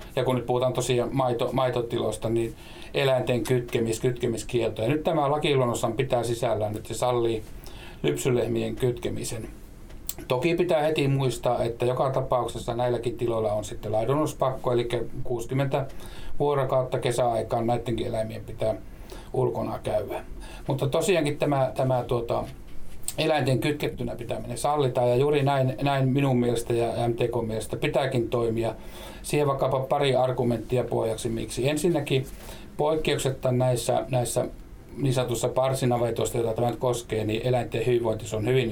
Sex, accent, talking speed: male, native, 130 wpm